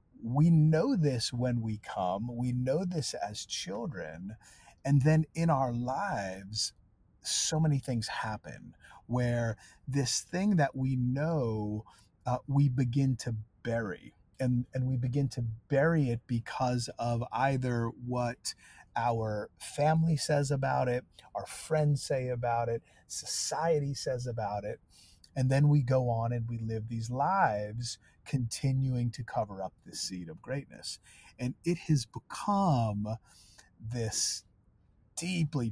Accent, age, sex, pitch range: American, 30-49, male, 110-140 Hz